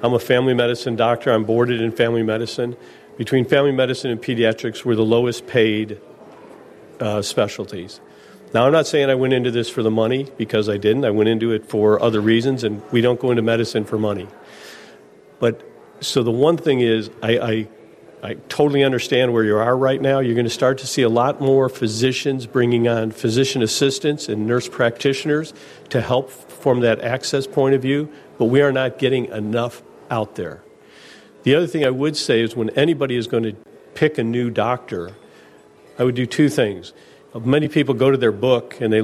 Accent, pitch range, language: American, 115-135 Hz, English